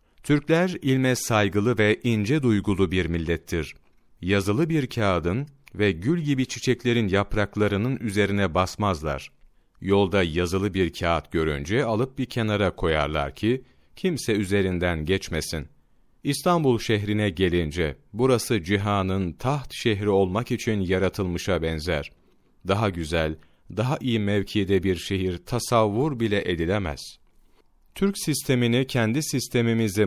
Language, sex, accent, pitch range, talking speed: Turkish, male, native, 95-120 Hz, 110 wpm